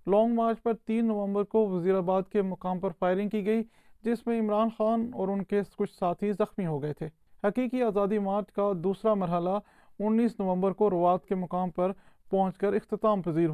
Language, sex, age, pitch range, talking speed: Urdu, male, 30-49, 185-210 Hz, 195 wpm